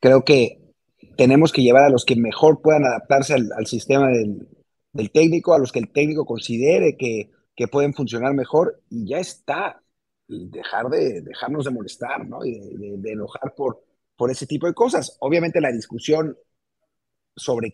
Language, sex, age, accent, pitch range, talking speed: English, male, 30-49, Mexican, 120-150 Hz, 170 wpm